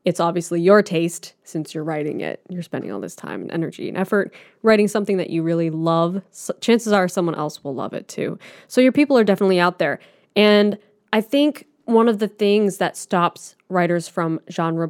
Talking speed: 200 wpm